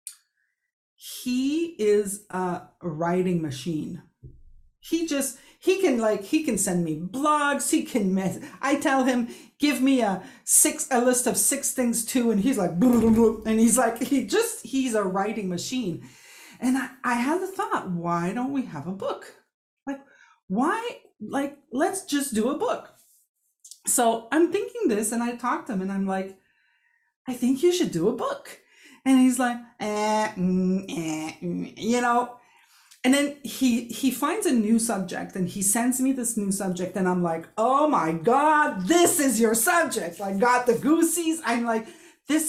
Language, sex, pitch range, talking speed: English, female, 205-285 Hz, 175 wpm